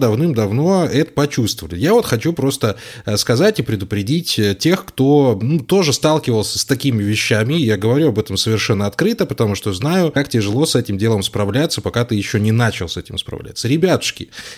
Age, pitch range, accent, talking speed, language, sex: 20-39, 110-150 Hz, native, 175 wpm, Russian, male